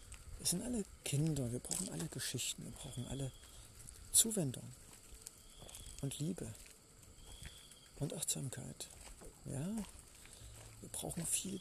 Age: 50-69